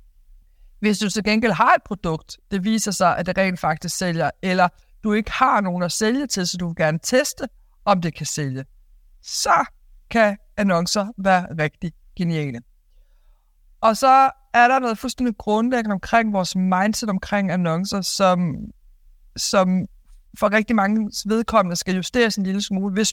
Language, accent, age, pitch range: Danish, native, 60-79, 175-215 Hz